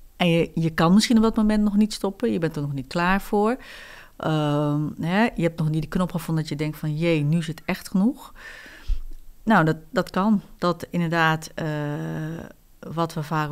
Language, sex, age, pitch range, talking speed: Dutch, female, 40-59, 155-185 Hz, 210 wpm